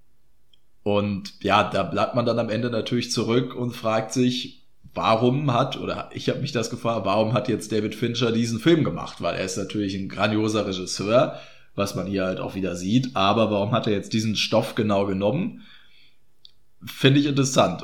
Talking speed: 185 wpm